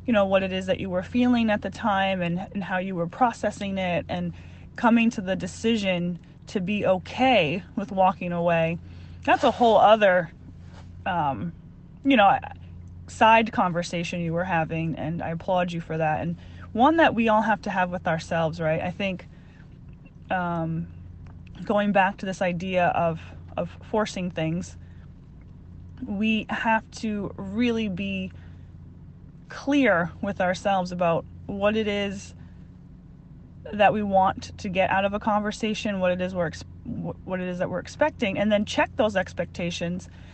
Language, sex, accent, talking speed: English, female, American, 160 wpm